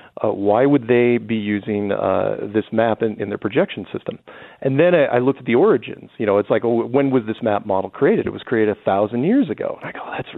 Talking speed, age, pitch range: 250 wpm, 40-59, 110-140 Hz